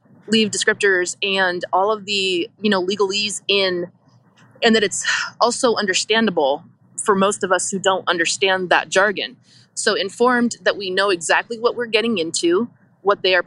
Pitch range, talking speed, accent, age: 175-210 Hz, 165 wpm, American, 20-39